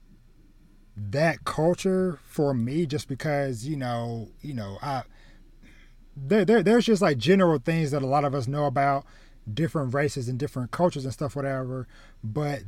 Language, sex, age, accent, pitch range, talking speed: English, male, 20-39, American, 120-145 Hz, 160 wpm